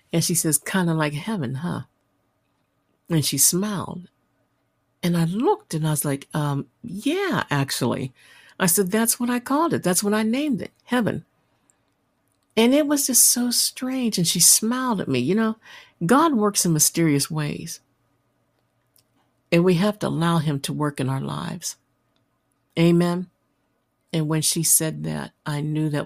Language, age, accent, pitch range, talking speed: English, 60-79, American, 140-185 Hz, 165 wpm